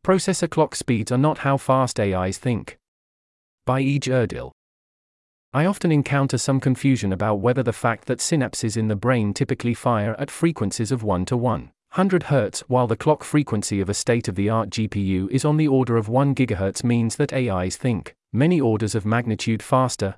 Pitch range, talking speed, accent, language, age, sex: 110-140 Hz, 175 wpm, British, English, 30-49, male